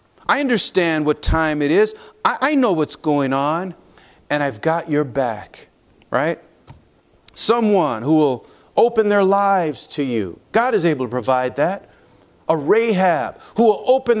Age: 40-59